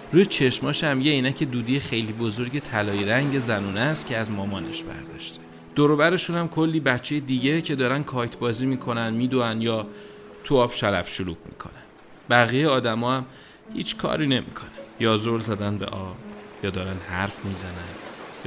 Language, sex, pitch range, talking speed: Persian, male, 100-125 Hz, 160 wpm